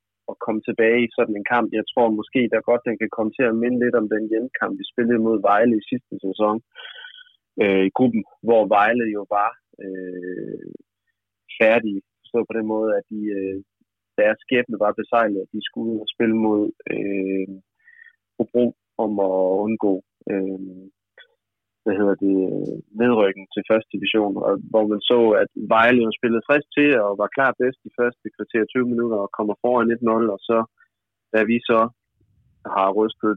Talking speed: 175 wpm